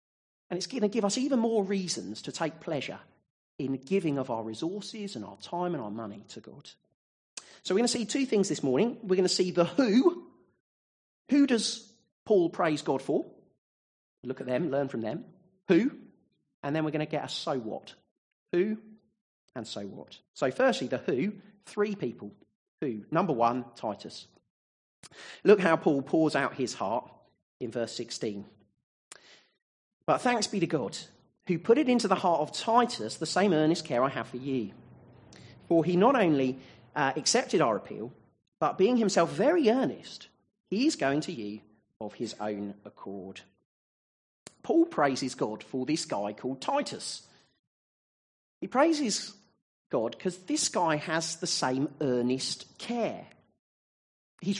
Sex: male